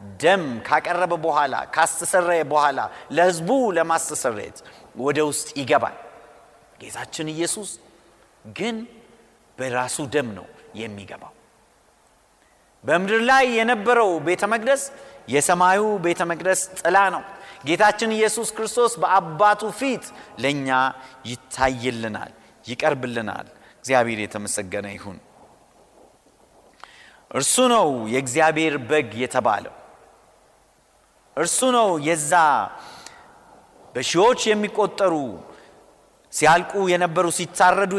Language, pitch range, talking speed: Amharic, 130-210 Hz, 75 wpm